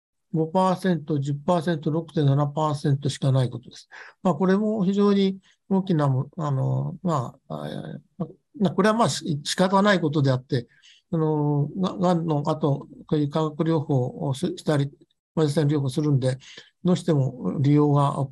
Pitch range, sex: 145-195 Hz, male